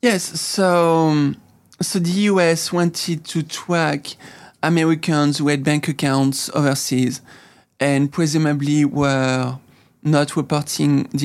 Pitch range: 135-155 Hz